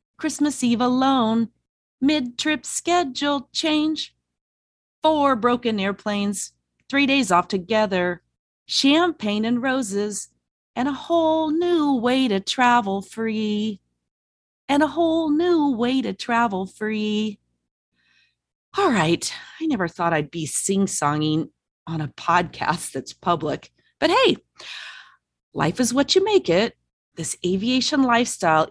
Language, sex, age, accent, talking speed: English, female, 40-59, American, 115 wpm